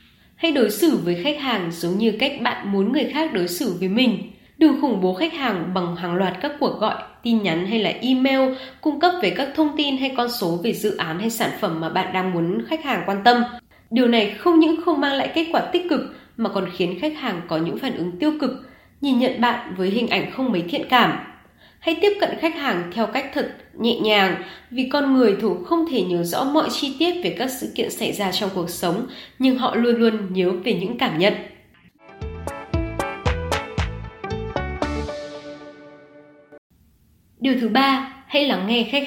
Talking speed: 205 wpm